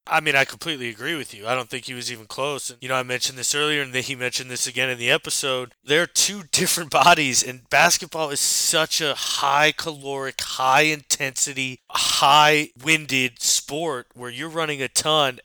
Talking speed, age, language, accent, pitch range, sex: 185 wpm, 20-39, English, American, 130-160 Hz, male